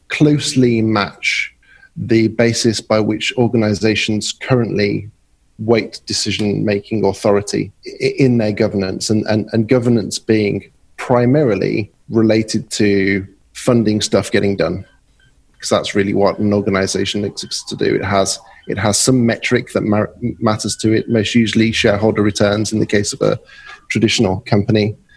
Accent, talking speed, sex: British, 130 wpm, male